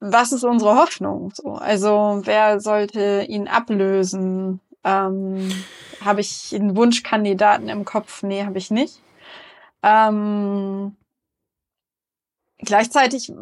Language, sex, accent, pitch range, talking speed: German, female, German, 195-235 Hz, 100 wpm